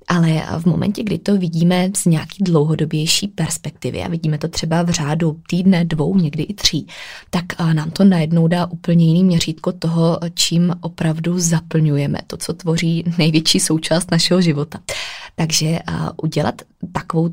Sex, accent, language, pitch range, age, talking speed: female, native, Czech, 160-180 Hz, 20-39, 150 wpm